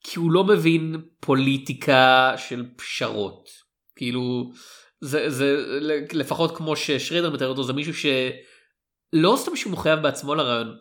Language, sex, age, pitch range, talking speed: Hebrew, male, 30-49, 135-160 Hz, 130 wpm